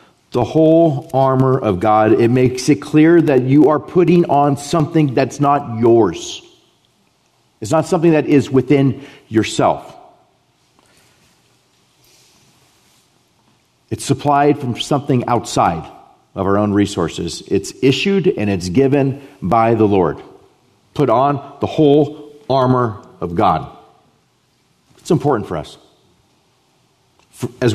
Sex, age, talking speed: male, 40-59, 115 wpm